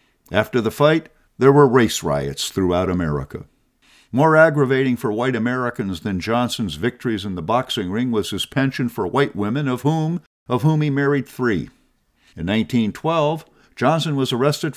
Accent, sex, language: American, male, English